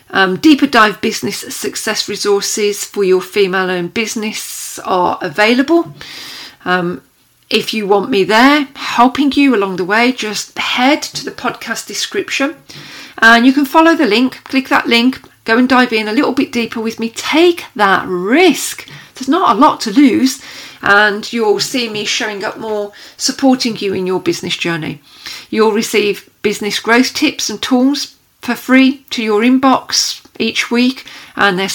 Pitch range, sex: 200-275 Hz, female